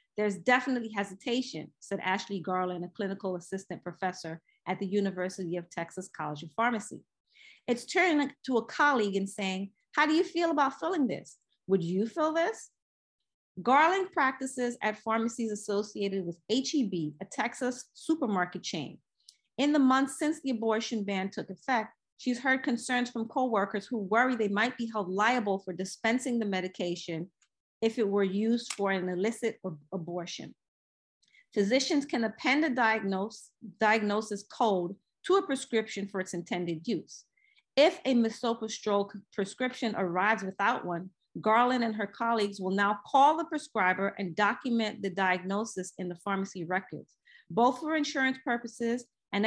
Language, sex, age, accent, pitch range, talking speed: English, female, 40-59, American, 190-250 Hz, 150 wpm